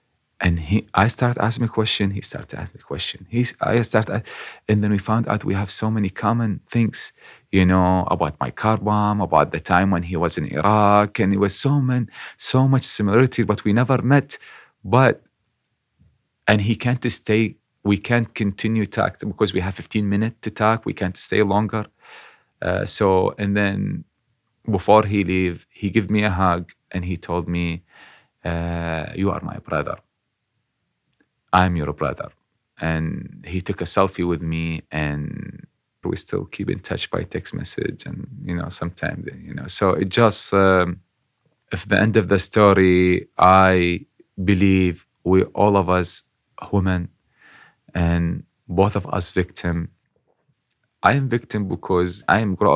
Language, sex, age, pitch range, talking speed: English, male, 30-49, 90-110 Hz, 170 wpm